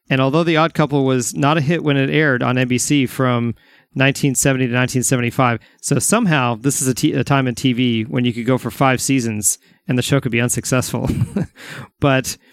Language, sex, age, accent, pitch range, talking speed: English, male, 40-59, American, 125-150 Hz, 190 wpm